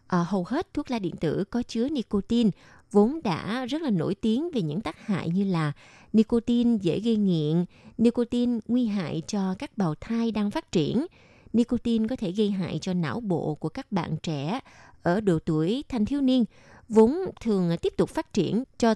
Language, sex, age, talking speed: Vietnamese, female, 20-39, 190 wpm